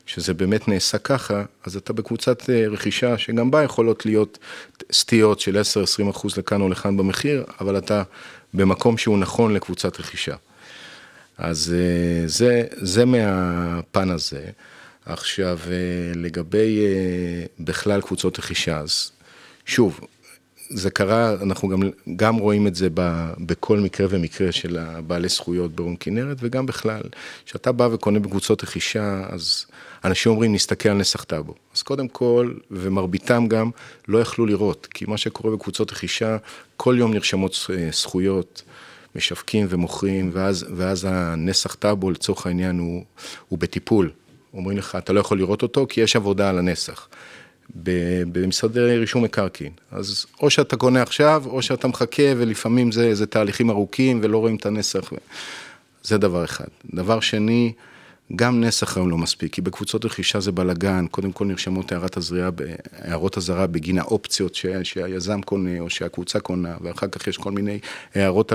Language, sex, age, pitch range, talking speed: Hebrew, male, 40-59, 90-110 Hz, 140 wpm